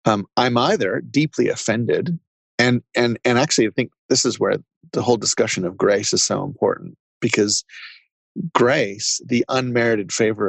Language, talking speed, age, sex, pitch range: English, 155 wpm, 30-49, male, 110-140 Hz